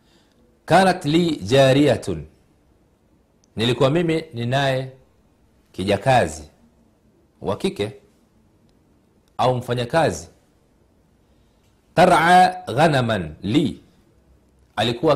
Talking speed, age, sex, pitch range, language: 65 wpm, 40-59, male, 105-150 Hz, Swahili